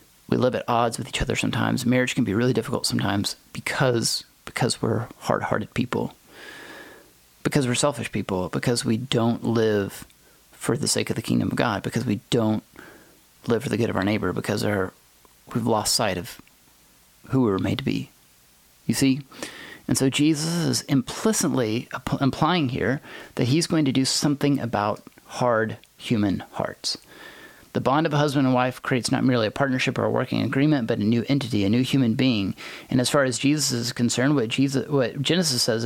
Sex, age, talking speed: male, 30-49, 185 wpm